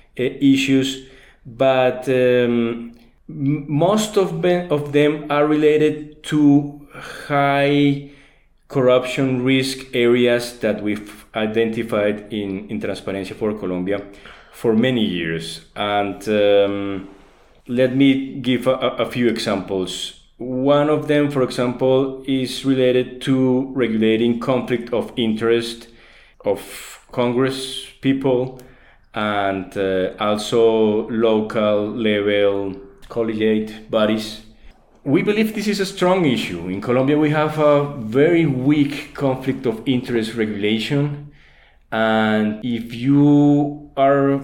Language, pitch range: English, 110-140 Hz